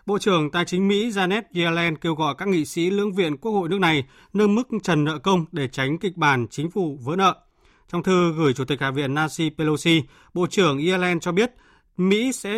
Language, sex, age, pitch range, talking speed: Vietnamese, male, 20-39, 145-190 Hz, 225 wpm